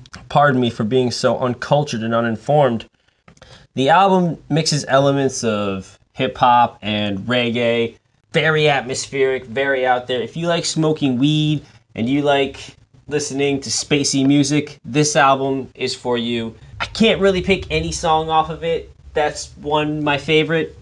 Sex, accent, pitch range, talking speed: male, American, 115-145 Hz, 145 wpm